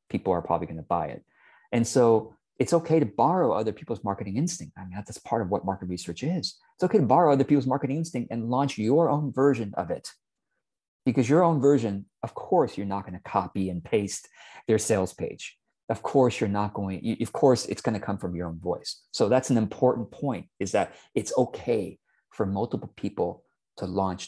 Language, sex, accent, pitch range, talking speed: English, male, American, 95-140 Hz, 215 wpm